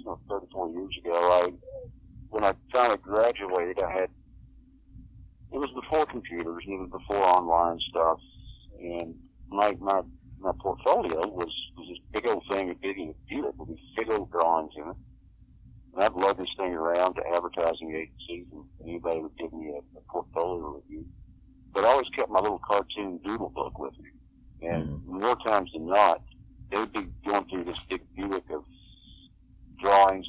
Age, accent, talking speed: 50-69, American, 165 wpm